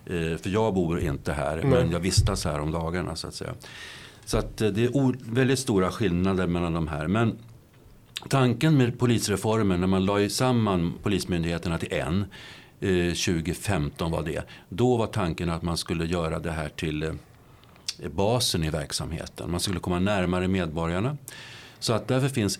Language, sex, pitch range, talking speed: Swedish, male, 90-115 Hz, 160 wpm